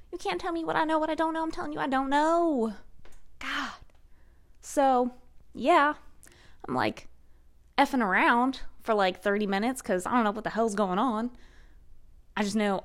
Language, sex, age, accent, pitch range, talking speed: English, female, 20-39, American, 200-315 Hz, 180 wpm